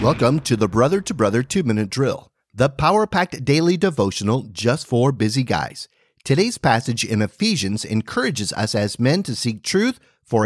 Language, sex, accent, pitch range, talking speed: English, male, American, 110-155 Hz, 160 wpm